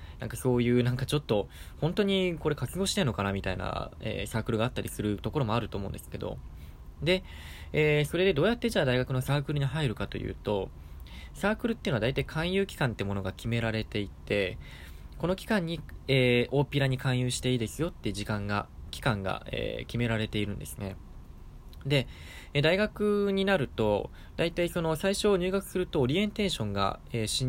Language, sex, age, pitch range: Japanese, male, 20-39, 100-150 Hz